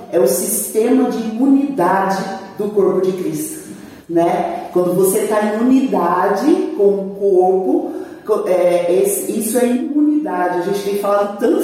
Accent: Brazilian